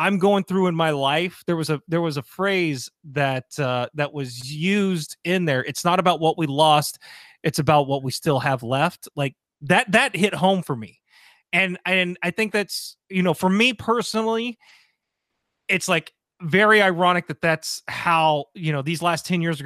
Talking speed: 195 wpm